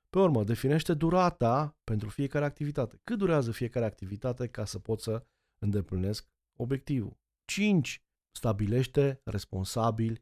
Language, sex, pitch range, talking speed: Romanian, male, 105-150 Hz, 115 wpm